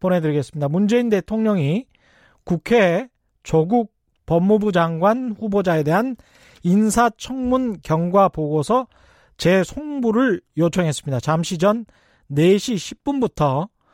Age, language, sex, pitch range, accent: 30-49, Korean, male, 165-220 Hz, native